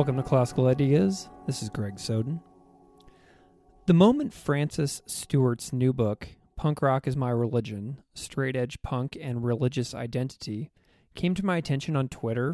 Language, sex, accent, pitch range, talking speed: English, male, American, 110-140 Hz, 145 wpm